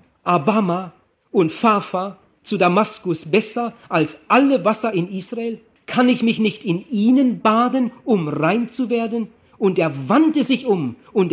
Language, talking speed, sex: German, 150 wpm, male